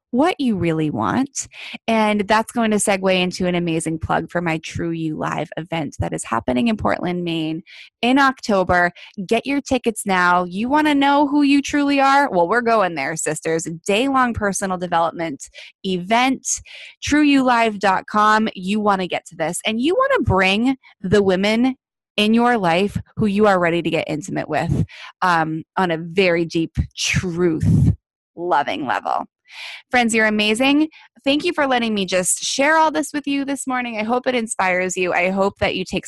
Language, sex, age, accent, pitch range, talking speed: English, female, 20-39, American, 170-245 Hz, 180 wpm